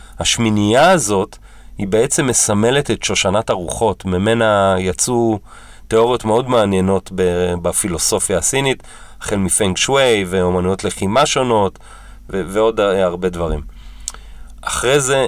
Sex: male